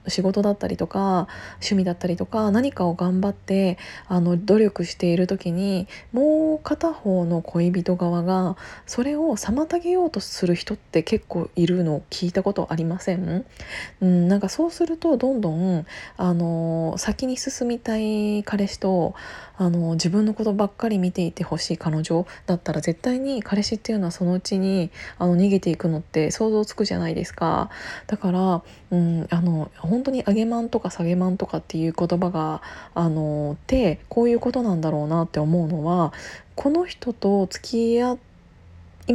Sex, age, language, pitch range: female, 20-39, Japanese, 175-235 Hz